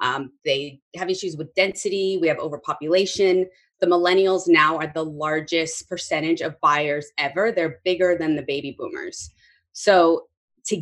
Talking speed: 145 wpm